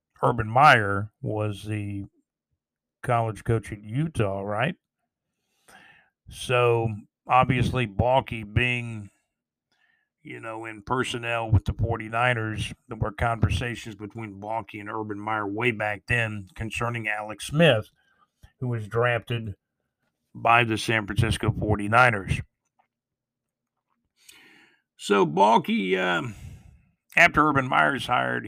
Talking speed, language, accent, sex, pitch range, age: 105 wpm, English, American, male, 105-125 Hz, 50-69